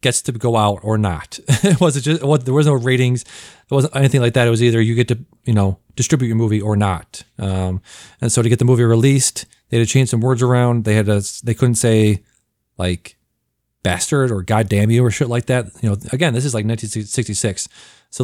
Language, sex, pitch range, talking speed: English, male, 105-130 Hz, 245 wpm